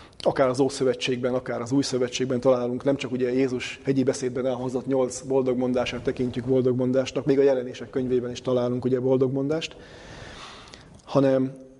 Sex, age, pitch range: male, 30-49, 125-135 Hz